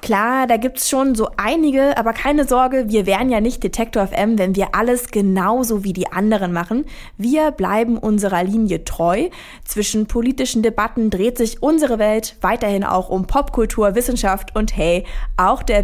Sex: female